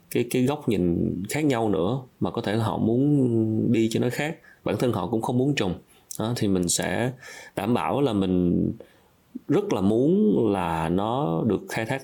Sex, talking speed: male, 190 wpm